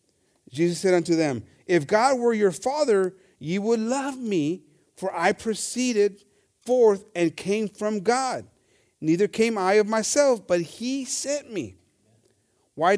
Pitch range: 155-225 Hz